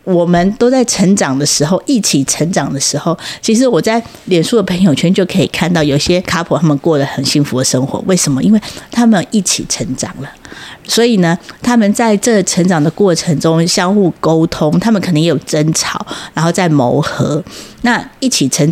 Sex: female